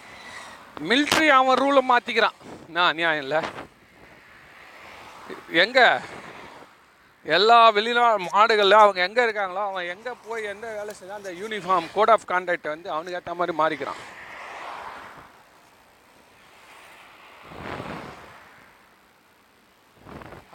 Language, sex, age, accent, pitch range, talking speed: Tamil, male, 40-59, native, 155-205 Hz, 85 wpm